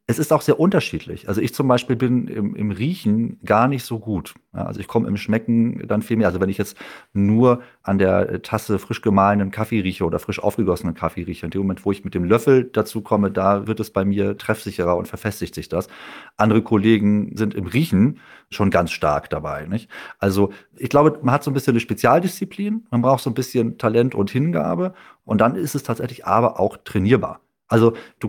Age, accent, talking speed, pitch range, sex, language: 40-59, German, 210 wpm, 100-125 Hz, male, German